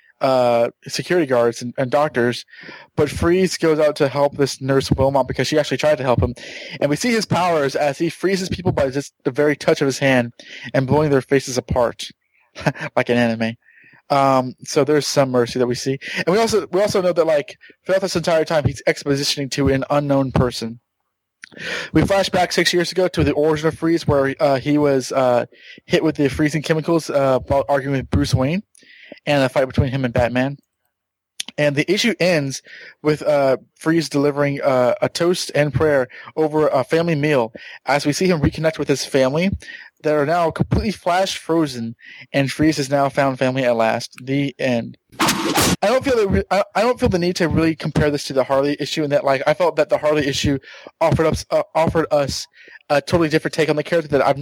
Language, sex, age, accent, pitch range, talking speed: English, male, 20-39, American, 130-160 Hz, 210 wpm